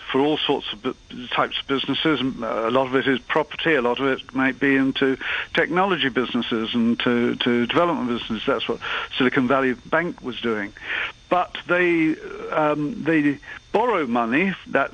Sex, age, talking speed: male, 50-69, 165 wpm